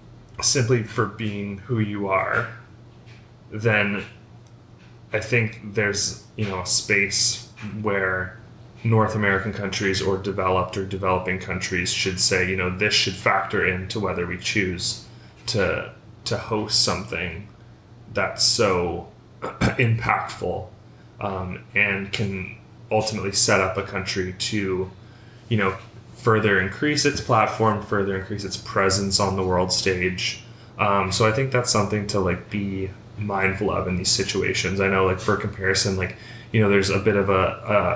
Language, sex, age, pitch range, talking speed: English, male, 20-39, 95-110 Hz, 145 wpm